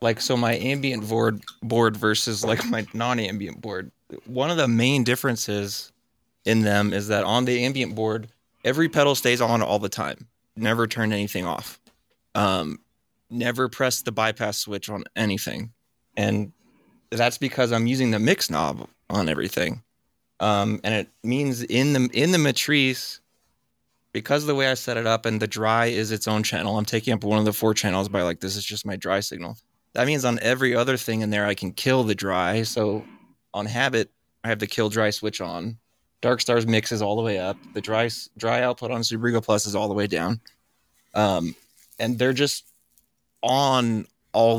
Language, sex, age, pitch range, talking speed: English, male, 20-39, 105-120 Hz, 190 wpm